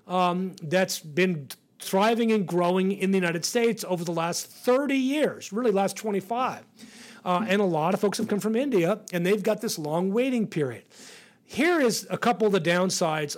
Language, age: English, 40-59